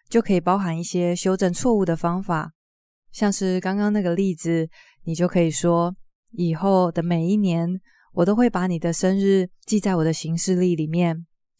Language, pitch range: Chinese, 170-205 Hz